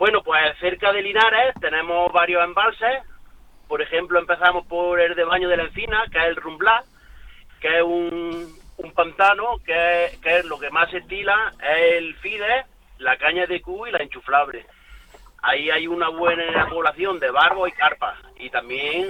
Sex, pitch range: male, 160-195 Hz